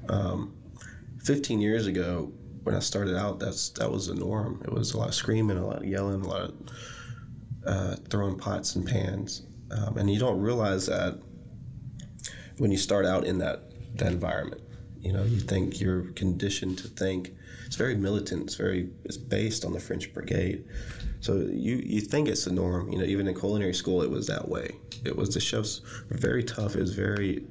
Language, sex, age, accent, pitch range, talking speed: English, male, 20-39, American, 95-115 Hz, 200 wpm